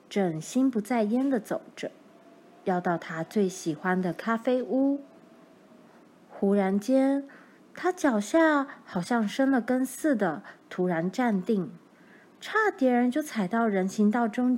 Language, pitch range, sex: Chinese, 200-295 Hz, female